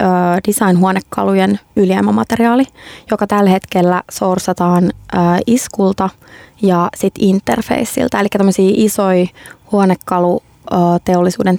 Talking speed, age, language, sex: 65 wpm, 20-39, Finnish, female